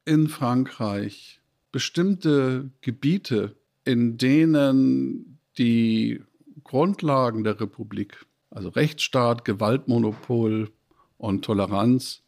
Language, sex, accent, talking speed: German, male, German, 75 wpm